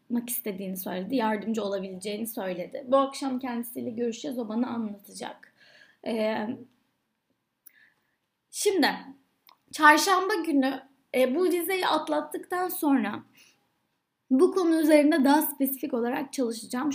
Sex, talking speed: female, 105 wpm